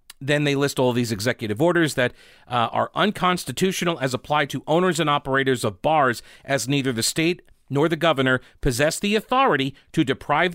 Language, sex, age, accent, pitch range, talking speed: English, male, 40-59, American, 125-165 Hz, 175 wpm